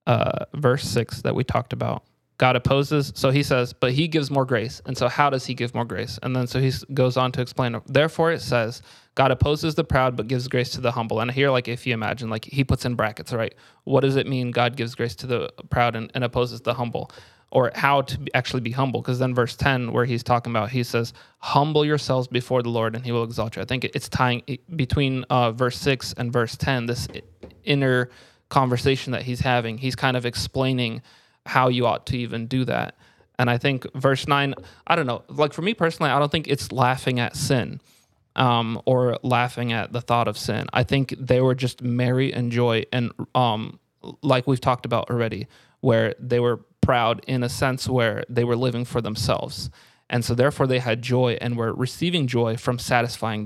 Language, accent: English, American